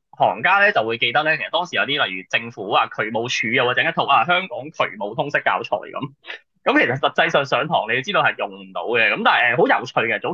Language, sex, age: Chinese, male, 20-39